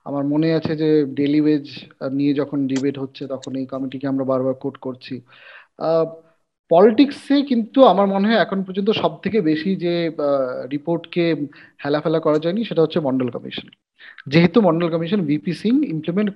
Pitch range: 145-180 Hz